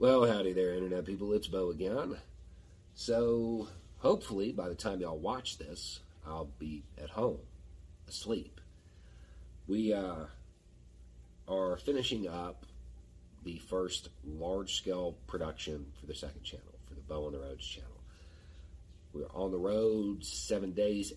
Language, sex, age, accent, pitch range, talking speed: English, male, 40-59, American, 75-90 Hz, 135 wpm